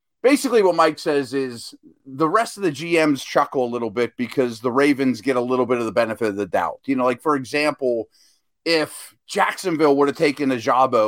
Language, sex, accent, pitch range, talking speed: English, male, American, 130-175 Hz, 210 wpm